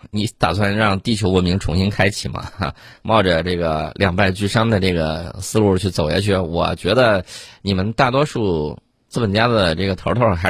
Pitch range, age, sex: 90-115 Hz, 20-39, male